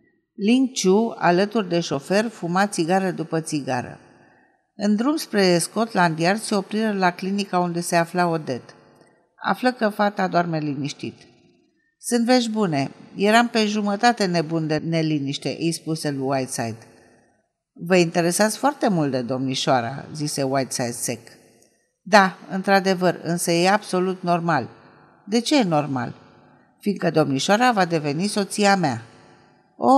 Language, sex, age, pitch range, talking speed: Romanian, female, 50-69, 155-205 Hz, 130 wpm